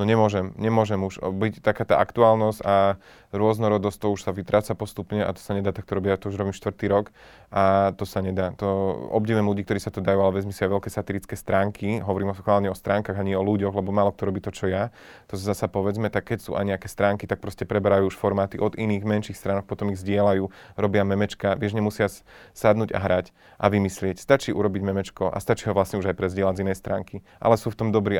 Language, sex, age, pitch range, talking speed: Slovak, male, 30-49, 95-105 Hz, 230 wpm